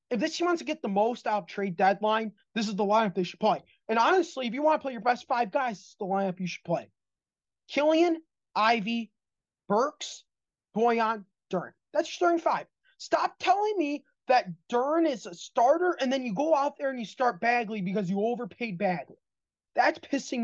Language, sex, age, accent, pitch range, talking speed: English, male, 20-39, American, 200-260 Hz, 205 wpm